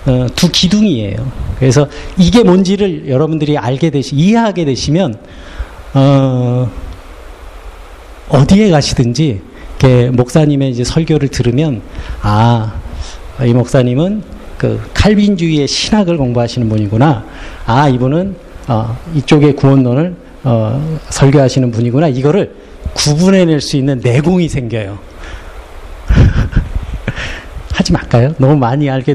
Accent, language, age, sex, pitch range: native, Korean, 40-59, male, 120-180 Hz